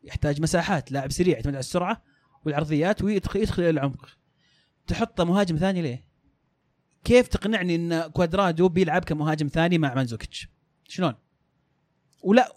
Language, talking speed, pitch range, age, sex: Arabic, 120 wpm, 145-195 Hz, 30-49, male